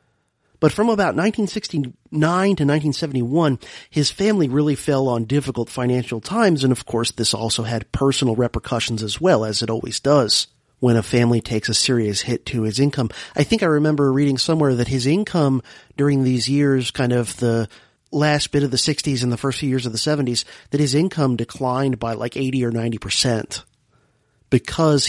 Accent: American